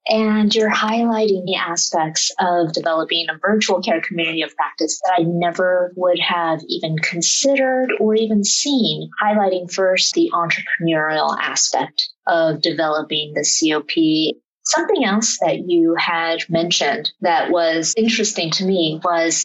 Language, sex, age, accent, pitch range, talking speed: English, female, 30-49, American, 165-220 Hz, 135 wpm